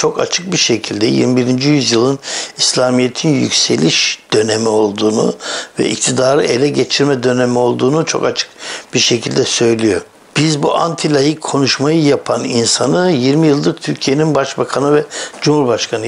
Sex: male